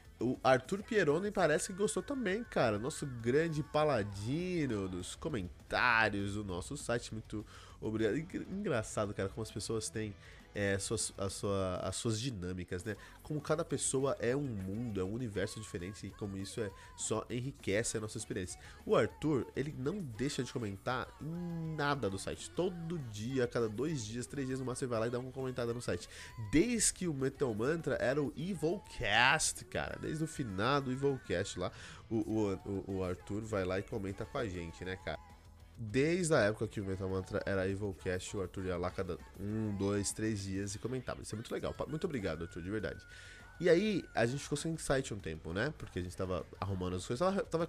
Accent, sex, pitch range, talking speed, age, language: Brazilian, male, 95-145 Hz, 200 wpm, 20-39, Portuguese